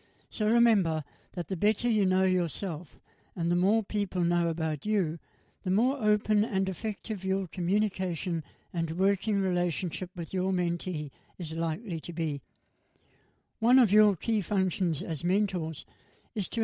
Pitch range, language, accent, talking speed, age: 175-210 Hz, English, British, 150 wpm, 60-79